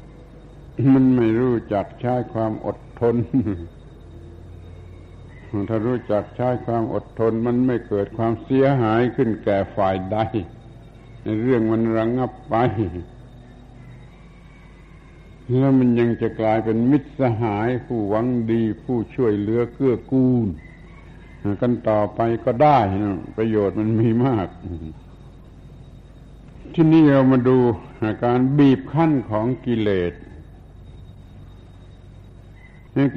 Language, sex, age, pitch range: Thai, male, 70-89, 105-125 Hz